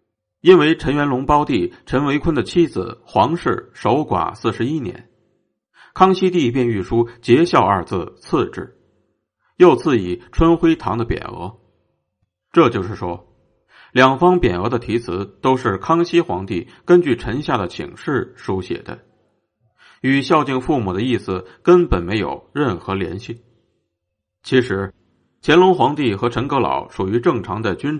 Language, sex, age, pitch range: Chinese, male, 50-69, 95-150 Hz